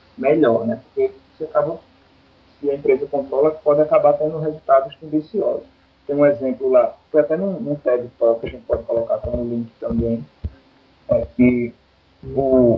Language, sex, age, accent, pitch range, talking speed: Portuguese, male, 20-39, Brazilian, 120-165 Hz, 160 wpm